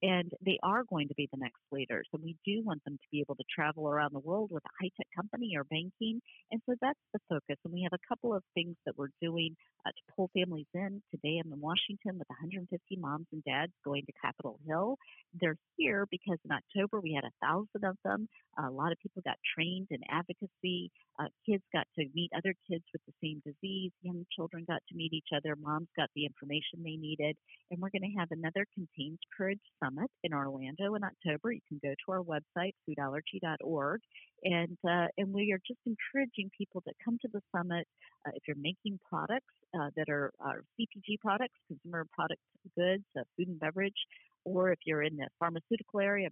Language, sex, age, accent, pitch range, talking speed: English, female, 50-69, American, 155-200 Hz, 210 wpm